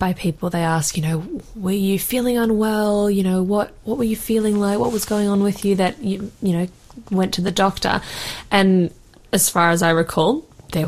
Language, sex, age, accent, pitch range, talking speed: English, female, 20-39, Australian, 165-195 Hz, 215 wpm